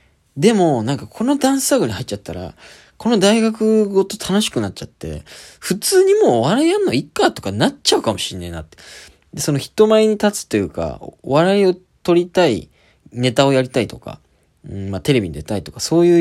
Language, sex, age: Japanese, male, 20-39